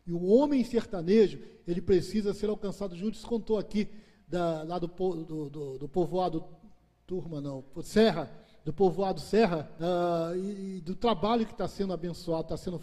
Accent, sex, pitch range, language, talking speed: Brazilian, male, 170-230 Hz, Portuguese, 165 wpm